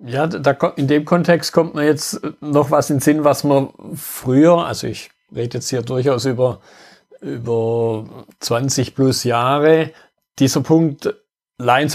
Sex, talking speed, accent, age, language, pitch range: male, 150 wpm, German, 50-69, German, 130-155 Hz